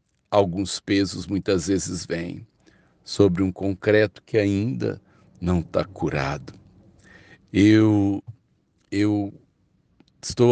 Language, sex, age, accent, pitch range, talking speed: Portuguese, male, 60-79, Brazilian, 90-110 Hz, 90 wpm